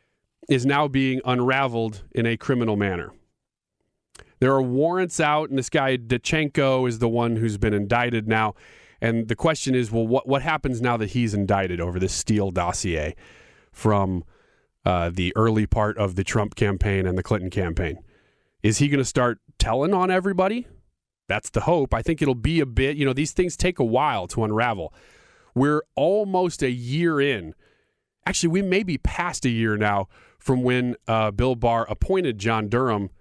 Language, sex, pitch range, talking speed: English, male, 110-145 Hz, 180 wpm